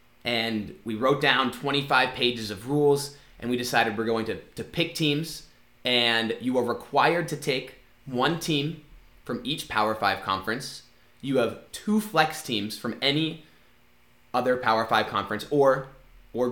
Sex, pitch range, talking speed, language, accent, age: male, 115-140 Hz, 155 wpm, English, American, 20-39